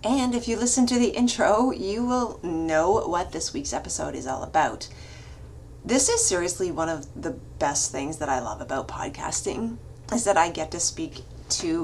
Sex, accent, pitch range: female, American, 155-220 Hz